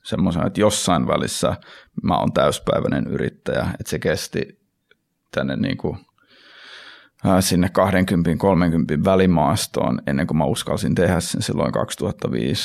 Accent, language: native, Finnish